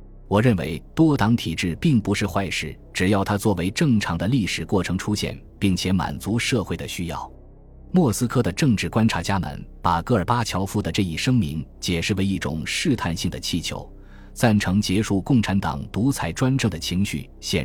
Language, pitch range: Chinese, 85-110 Hz